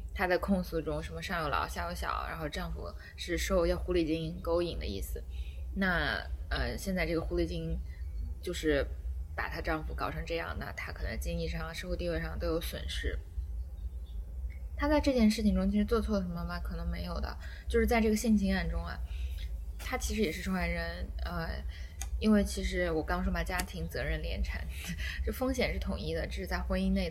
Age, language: 20-39, Chinese